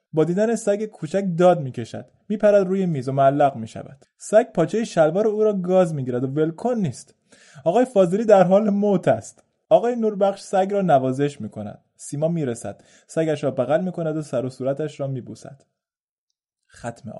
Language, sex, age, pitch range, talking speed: Persian, male, 20-39, 125-190 Hz, 165 wpm